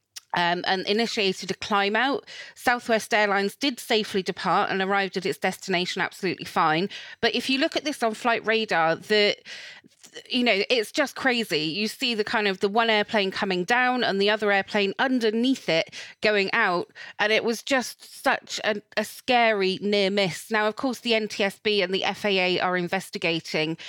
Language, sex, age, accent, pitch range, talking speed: English, female, 30-49, British, 190-225 Hz, 180 wpm